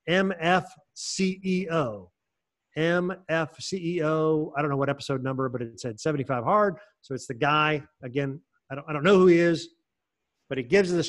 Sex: male